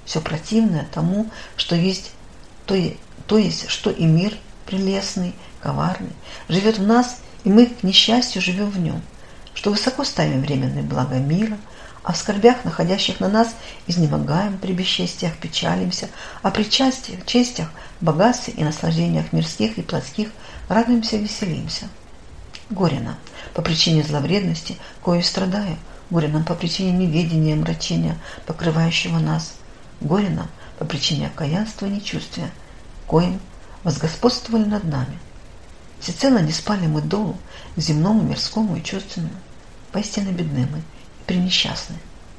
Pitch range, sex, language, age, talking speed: 160-210 Hz, female, Russian, 50-69, 130 wpm